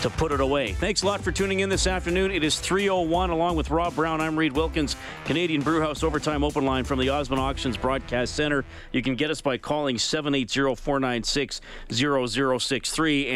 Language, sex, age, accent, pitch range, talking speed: English, male, 40-59, American, 120-150 Hz, 180 wpm